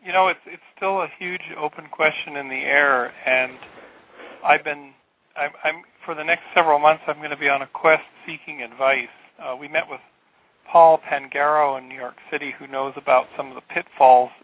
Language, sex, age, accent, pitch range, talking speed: English, male, 50-69, American, 135-155 Hz, 200 wpm